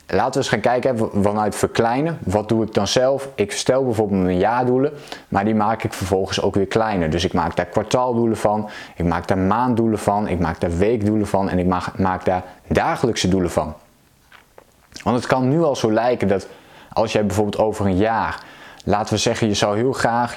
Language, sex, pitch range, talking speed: Dutch, male, 100-120 Hz, 205 wpm